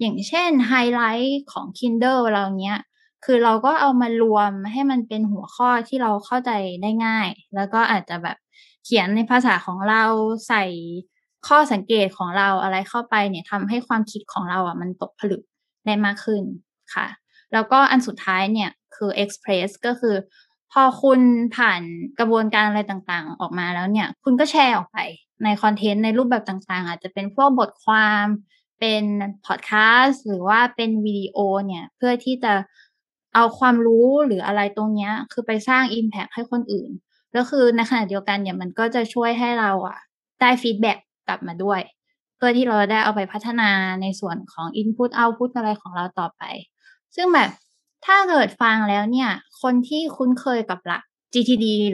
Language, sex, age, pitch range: Thai, female, 10-29, 200-245 Hz